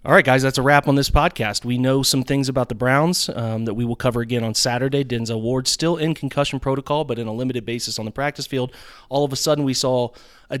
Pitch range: 115-135 Hz